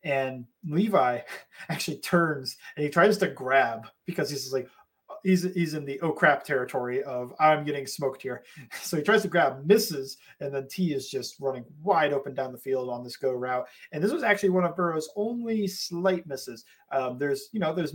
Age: 30-49